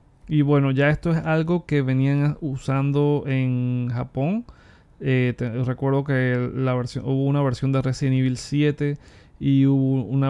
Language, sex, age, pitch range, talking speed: Spanish, male, 20-39, 125-145 Hz, 140 wpm